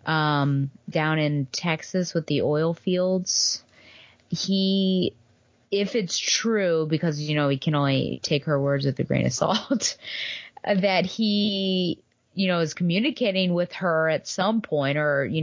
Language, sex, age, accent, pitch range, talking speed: English, female, 20-39, American, 145-185 Hz, 150 wpm